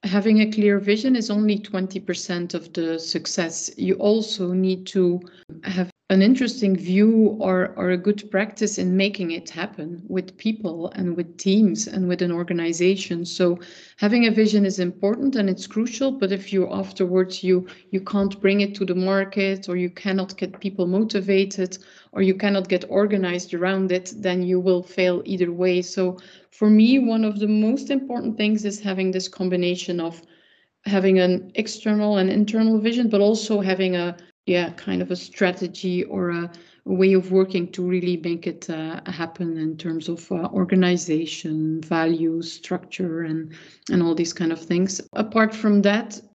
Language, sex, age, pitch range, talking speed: English, female, 30-49, 180-200 Hz, 170 wpm